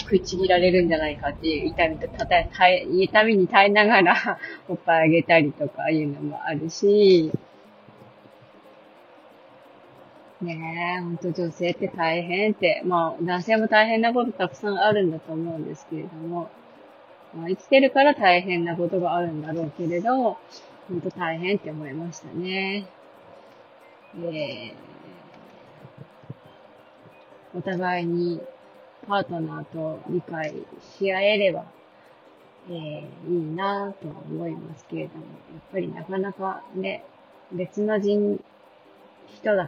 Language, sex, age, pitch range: Japanese, female, 20-39, 165-195 Hz